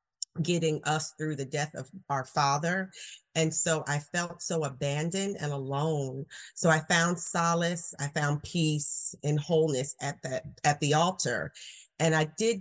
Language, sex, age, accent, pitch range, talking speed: English, female, 40-59, American, 145-170 Hz, 150 wpm